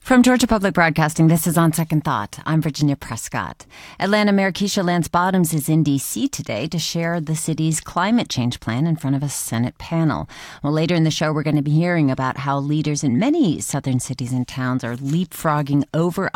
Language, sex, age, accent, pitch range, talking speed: English, female, 40-59, American, 135-180 Hz, 205 wpm